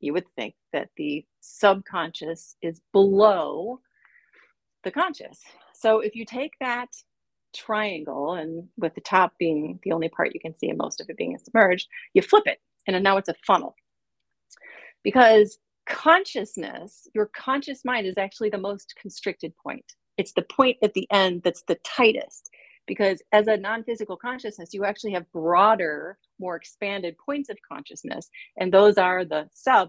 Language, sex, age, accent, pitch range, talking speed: English, female, 40-59, American, 185-245 Hz, 160 wpm